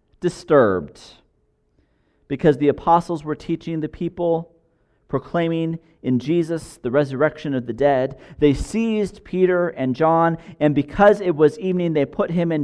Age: 40-59